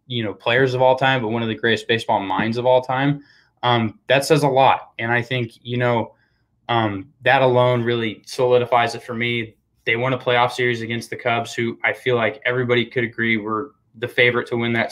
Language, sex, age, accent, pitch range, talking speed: English, male, 20-39, American, 115-125 Hz, 220 wpm